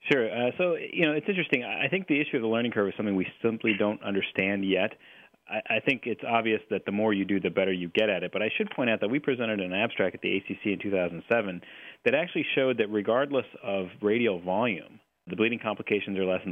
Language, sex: English, male